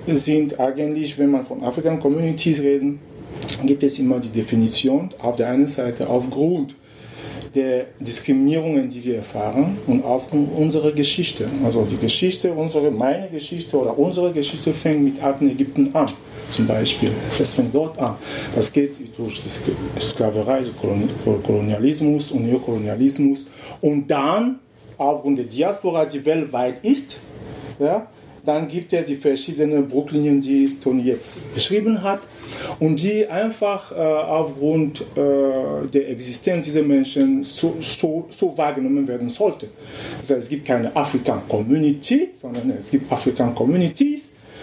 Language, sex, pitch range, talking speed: German, male, 125-155 Hz, 135 wpm